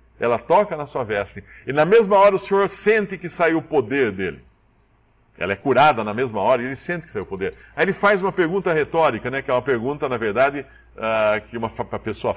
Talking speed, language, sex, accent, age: 225 wpm, English, male, Brazilian, 50-69